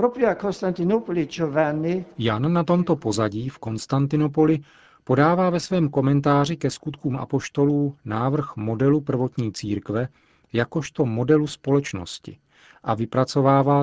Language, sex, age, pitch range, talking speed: Czech, male, 40-59, 115-145 Hz, 95 wpm